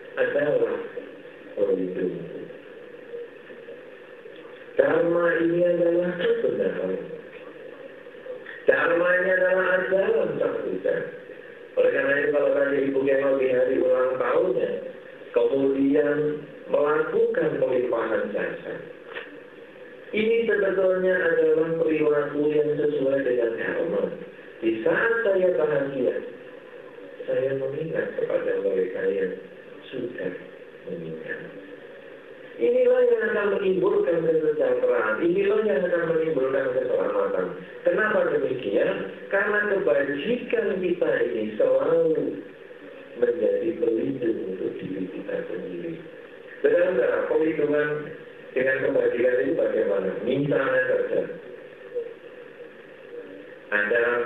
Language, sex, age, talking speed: Indonesian, male, 50-69, 85 wpm